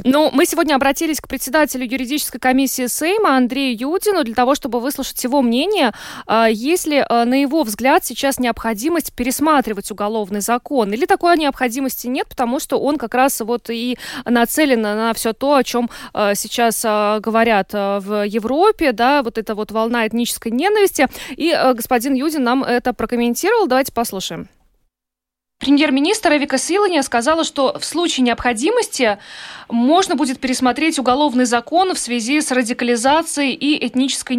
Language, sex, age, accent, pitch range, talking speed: Russian, female, 20-39, native, 235-290 Hz, 140 wpm